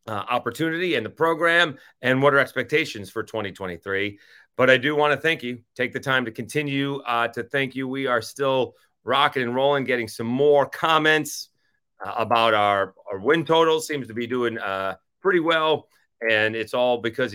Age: 30-49